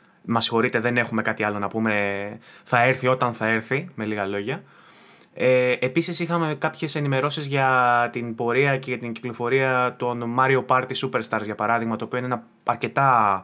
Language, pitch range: Greek, 115-130 Hz